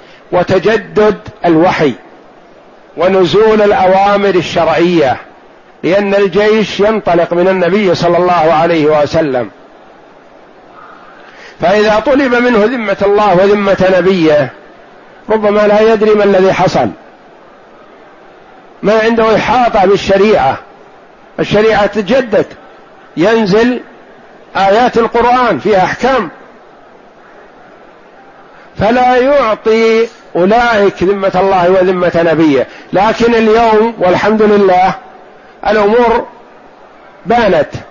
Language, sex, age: Arabic, male, 50-69